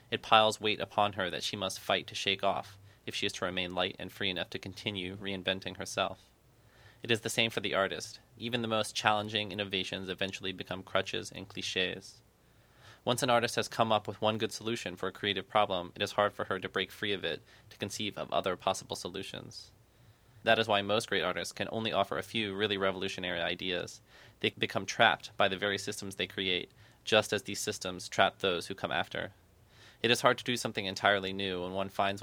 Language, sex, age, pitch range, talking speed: English, male, 20-39, 95-110 Hz, 215 wpm